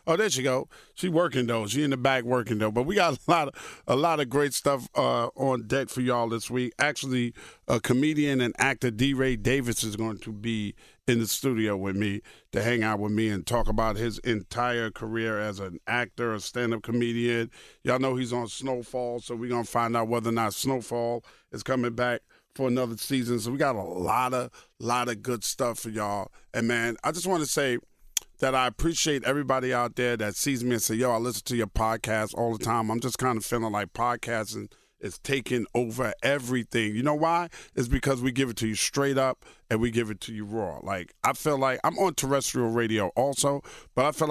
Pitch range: 115-135 Hz